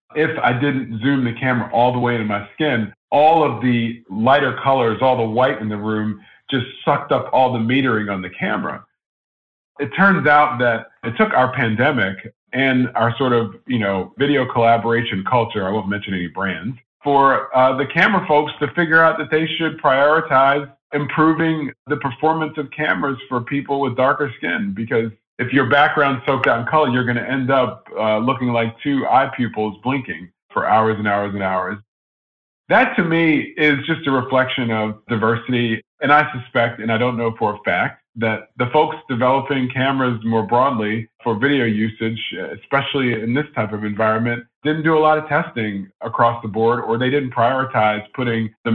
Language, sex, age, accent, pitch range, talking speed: English, male, 40-59, American, 110-140 Hz, 185 wpm